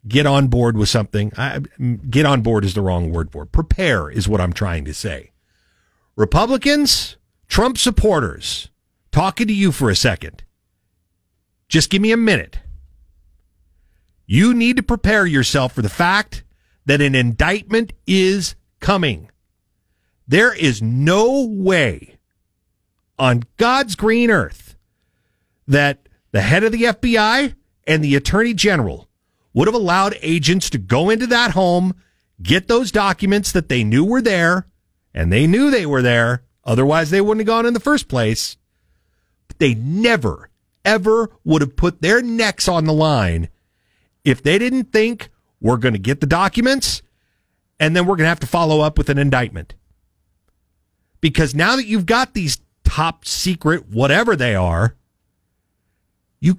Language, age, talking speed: English, 50-69, 155 wpm